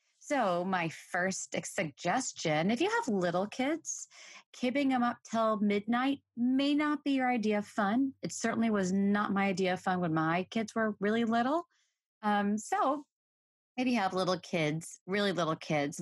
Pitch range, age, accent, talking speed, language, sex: 170-235 Hz, 30-49, American, 170 wpm, English, female